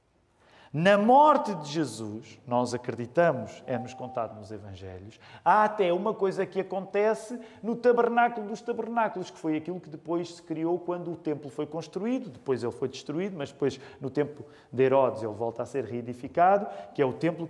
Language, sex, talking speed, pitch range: Portuguese, male, 175 wpm, 125-195 Hz